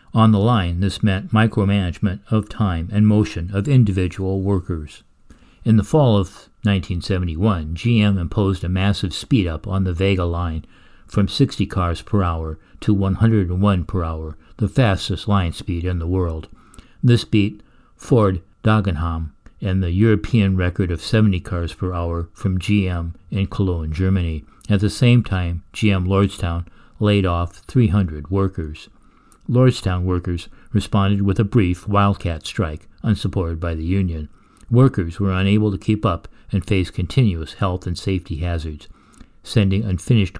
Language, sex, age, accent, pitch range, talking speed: English, male, 60-79, American, 90-105 Hz, 145 wpm